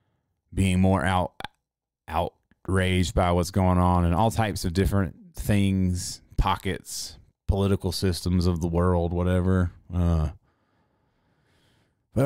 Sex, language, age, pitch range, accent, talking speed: male, English, 30-49, 90-115 Hz, American, 115 wpm